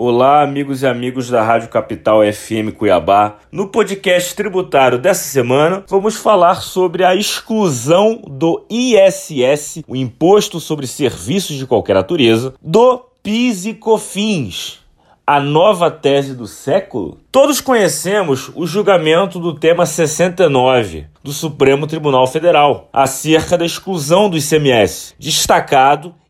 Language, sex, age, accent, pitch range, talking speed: Portuguese, male, 30-49, Brazilian, 145-210 Hz, 125 wpm